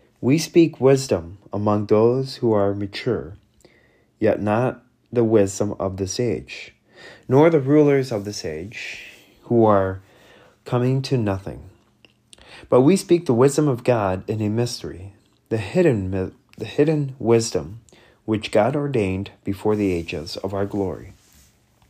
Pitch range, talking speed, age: 100-130 Hz, 135 wpm, 30-49